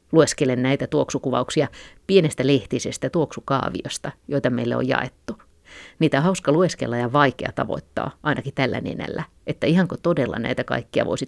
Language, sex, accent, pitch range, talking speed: Finnish, female, native, 125-150 Hz, 140 wpm